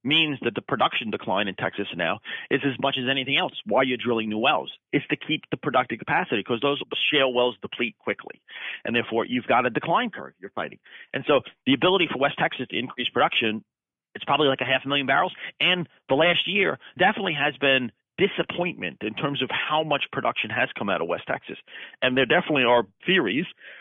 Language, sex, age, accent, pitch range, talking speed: English, male, 40-59, American, 125-160 Hz, 210 wpm